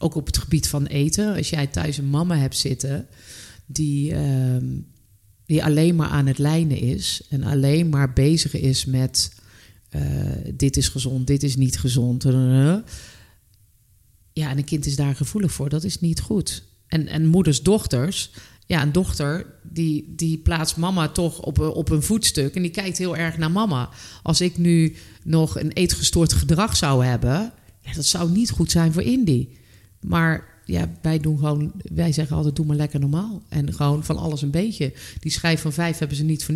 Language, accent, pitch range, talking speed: Dutch, Dutch, 130-165 Hz, 185 wpm